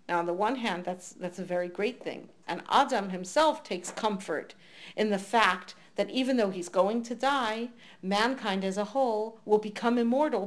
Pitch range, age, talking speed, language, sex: 185-225 Hz, 40-59, 190 wpm, English, female